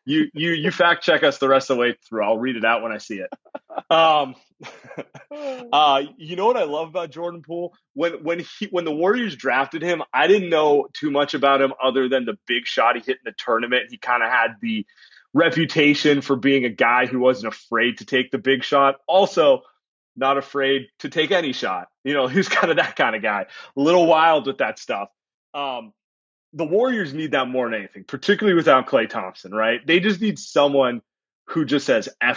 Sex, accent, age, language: male, American, 30-49, English